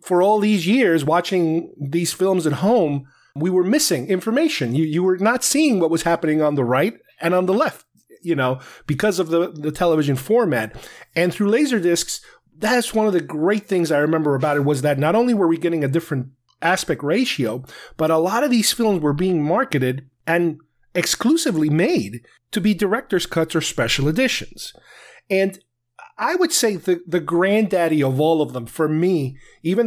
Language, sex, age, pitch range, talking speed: English, male, 30-49, 140-185 Hz, 185 wpm